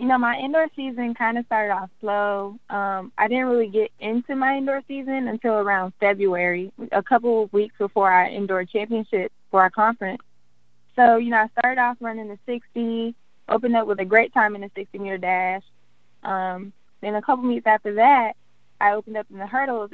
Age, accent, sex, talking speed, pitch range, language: 10-29, American, female, 200 wpm, 190-230 Hz, English